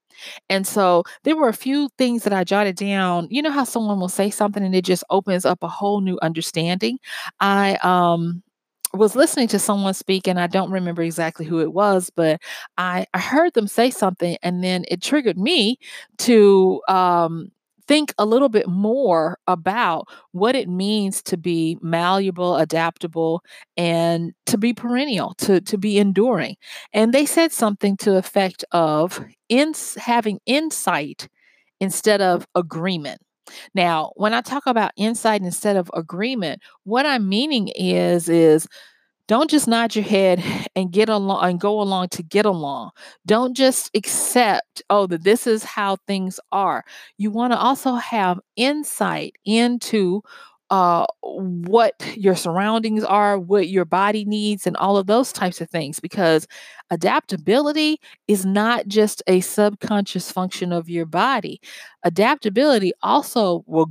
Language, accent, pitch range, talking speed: English, American, 180-225 Hz, 155 wpm